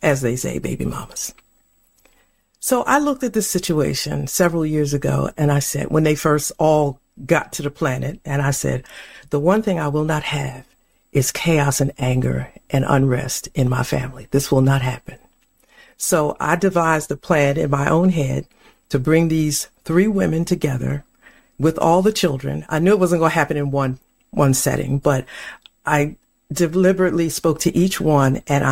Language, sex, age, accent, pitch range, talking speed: English, female, 50-69, American, 140-190 Hz, 180 wpm